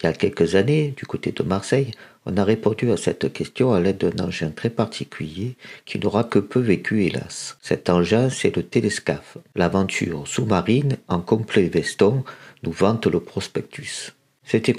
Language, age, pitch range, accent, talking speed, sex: French, 50-69, 85-110 Hz, French, 170 wpm, male